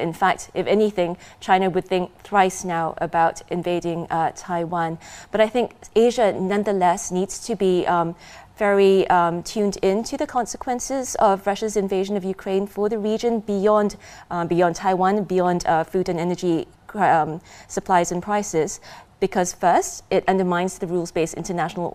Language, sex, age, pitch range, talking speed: English, female, 20-39, 170-205 Hz, 155 wpm